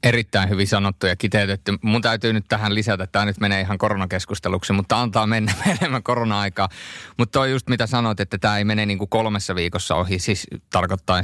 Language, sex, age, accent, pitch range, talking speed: Finnish, male, 30-49, native, 95-110 Hz, 200 wpm